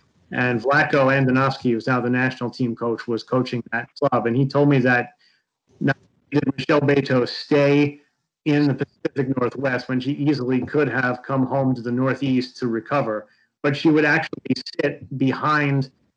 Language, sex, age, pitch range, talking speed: English, male, 30-49, 125-145 Hz, 165 wpm